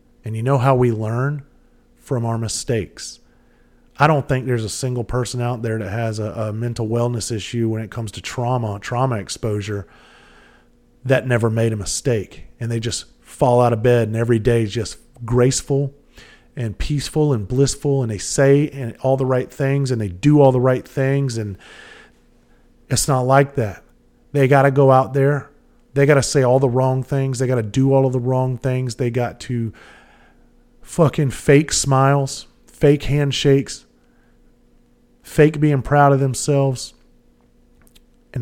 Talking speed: 175 wpm